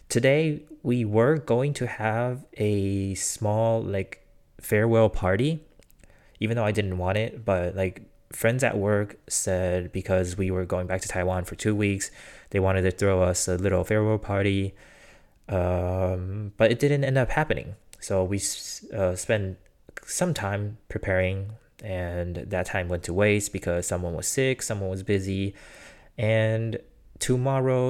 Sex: male